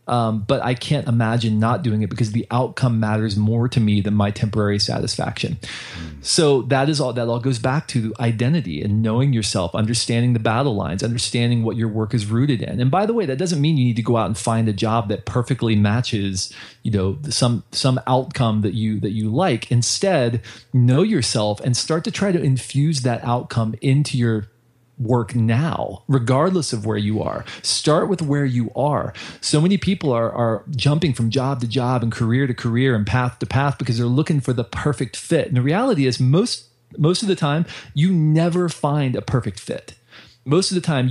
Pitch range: 115-140 Hz